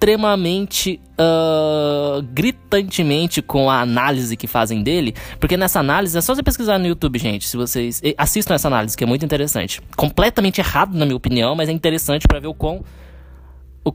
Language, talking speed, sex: Portuguese, 175 wpm, male